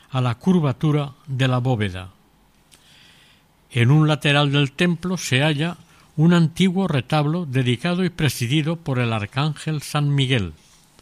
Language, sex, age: Spanish, male, 60-79